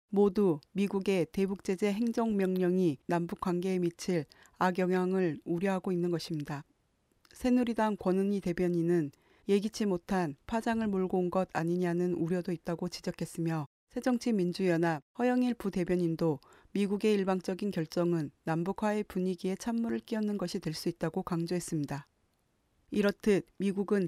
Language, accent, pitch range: Korean, native, 170-200 Hz